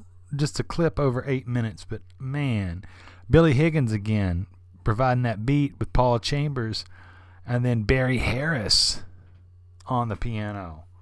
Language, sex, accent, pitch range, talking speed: English, male, American, 90-125 Hz, 130 wpm